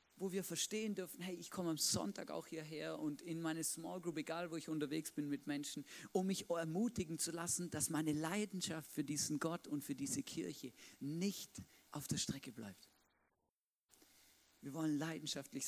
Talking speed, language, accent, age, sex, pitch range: 175 wpm, German, German, 40-59, male, 150-205 Hz